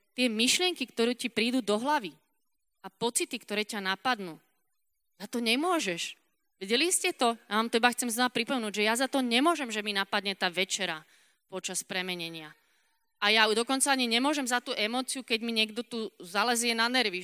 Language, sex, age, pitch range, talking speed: Slovak, female, 30-49, 185-240 Hz, 180 wpm